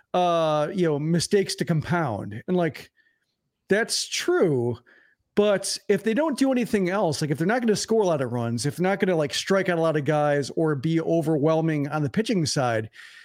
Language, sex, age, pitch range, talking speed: English, male, 40-59, 155-210 Hz, 215 wpm